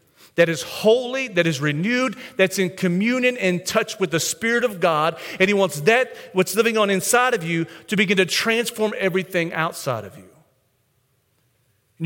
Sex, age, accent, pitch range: male, 40-59, American, 145-205 Hz